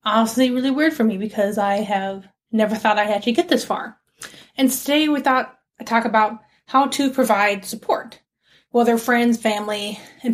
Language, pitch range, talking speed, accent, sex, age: English, 210-250 Hz, 170 wpm, American, female, 20-39